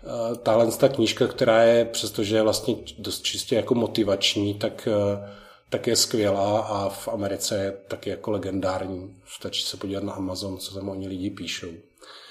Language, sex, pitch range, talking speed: Slovak, male, 105-125 Hz, 155 wpm